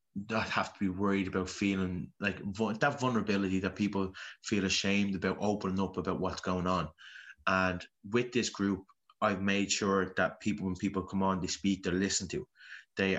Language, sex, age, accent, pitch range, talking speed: English, male, 20-39, Irish, 95-100 Hz, 180 wpm